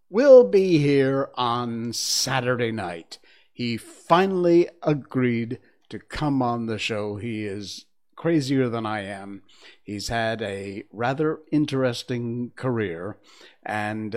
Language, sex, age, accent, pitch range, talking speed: English, male, 50-69, American, 105-145 Hz, 115 wpm